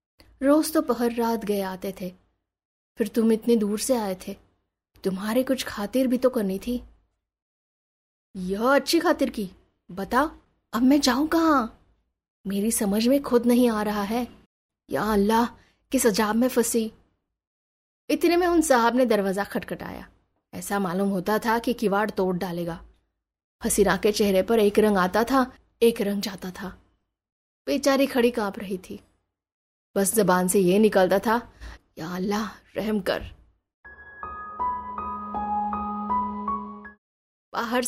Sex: female